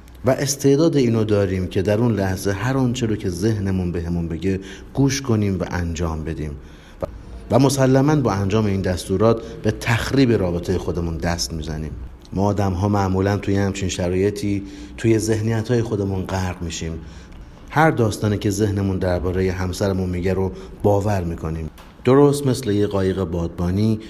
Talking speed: 150 wpm